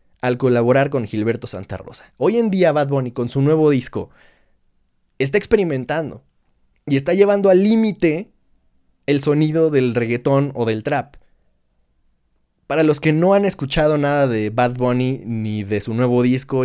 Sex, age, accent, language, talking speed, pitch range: male, 20-39, Mexican, Spanish, 160 wpm, 120-175 Hz